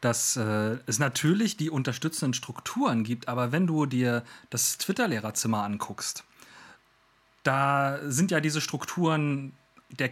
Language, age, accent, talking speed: German, 40-59, German, 125 wpm